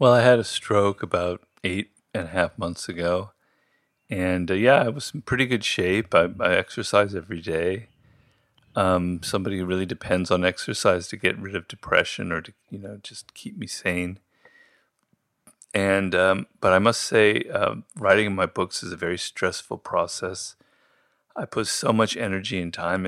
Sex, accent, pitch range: male, American, 90-110 Hz